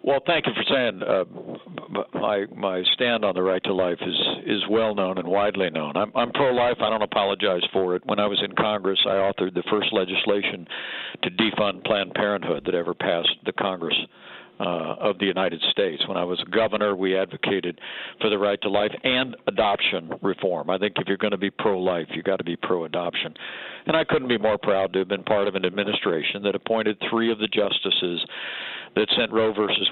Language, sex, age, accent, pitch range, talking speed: English, male, 60-79, American, 95-115 Hz, 205 wpm